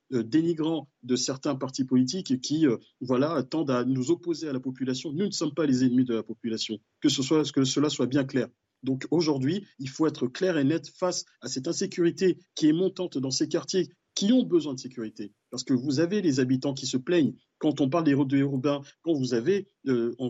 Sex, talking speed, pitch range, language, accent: male, 235 wpm, 130-175 Hz, French, French